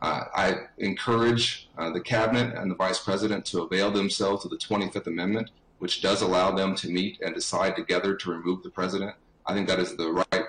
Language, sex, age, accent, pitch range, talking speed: English, male, 30-49, American, 95-120 Hz, 205 wpm